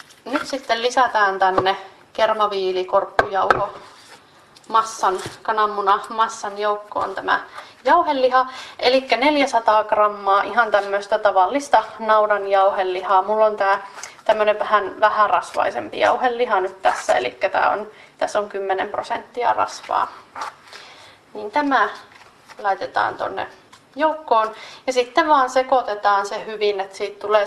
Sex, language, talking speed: female, Finnish, 110 wpm